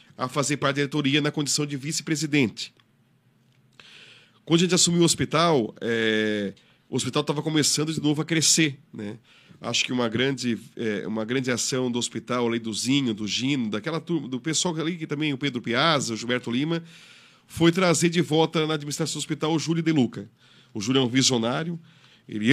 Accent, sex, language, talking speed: Brazilian, male, Portuguese, 185 wpm